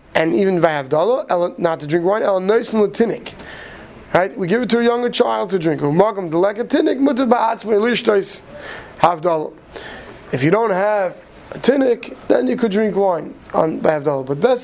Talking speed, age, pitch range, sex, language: 135 wpm, 20-39, 165-215 Hz, male, English